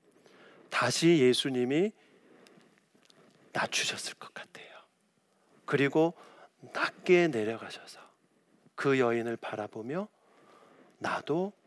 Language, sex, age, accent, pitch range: Korean, male, 40-59, native, 175-255 Hz